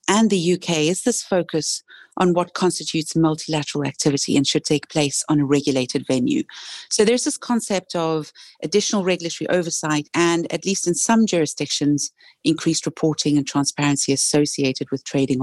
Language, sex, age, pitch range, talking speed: English, female, 40-59, 145-175 Hz, 155 wpm